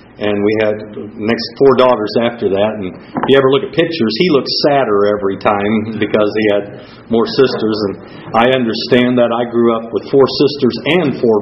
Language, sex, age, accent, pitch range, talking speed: English, male, 50-69, American, 110-135 Hz, 195 wpm